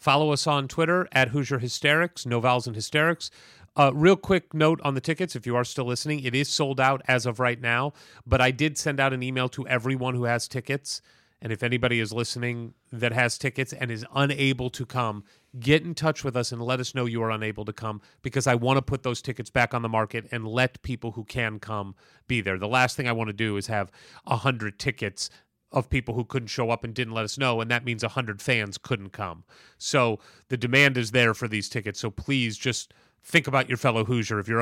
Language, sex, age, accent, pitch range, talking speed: English, male, 30-49, American, 110-135 Hz, 235 wpm